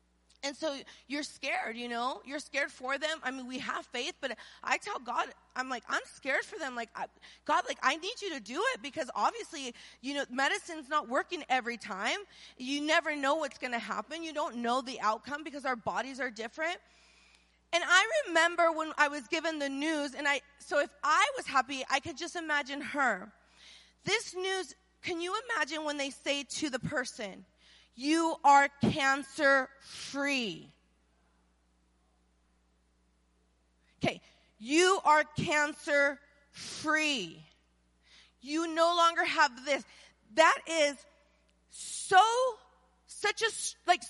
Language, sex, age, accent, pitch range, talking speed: English, female, 30-49, American, 255-345 Hz, 150 wpm